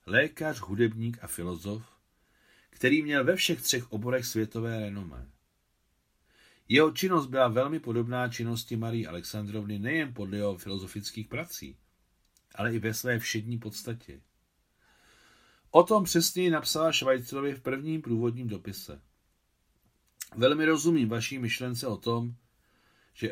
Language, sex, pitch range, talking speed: Czech, male, 105-130 Hz, 120 wpm